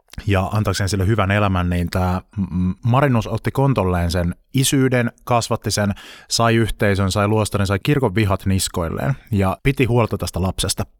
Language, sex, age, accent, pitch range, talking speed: Finnish, male, 20-39, native, 95-110 Hz, 145 wpm